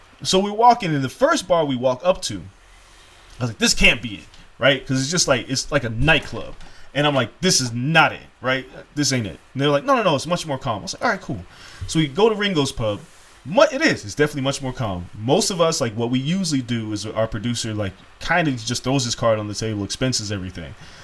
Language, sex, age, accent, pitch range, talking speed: English, male, 20-39, American, 115-170 Hz, 260 wpm